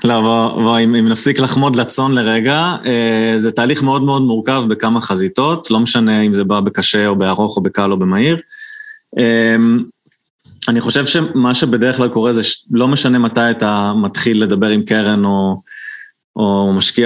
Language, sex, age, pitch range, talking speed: Hebrew, male, 20-39, 105-125 Hz, 150 wpm